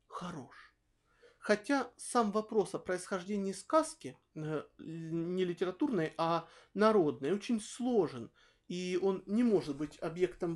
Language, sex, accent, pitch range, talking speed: Russian, male, native, 175-240 Hz, 110 wpm